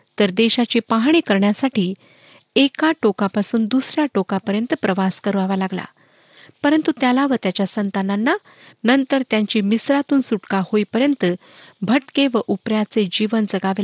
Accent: native